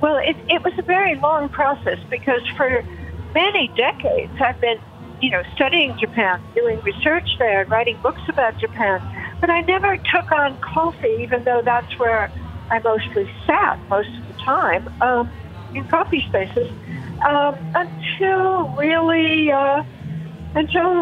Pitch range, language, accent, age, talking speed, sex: 220-325 Hz, English, American, 60-79, 150 wpm, female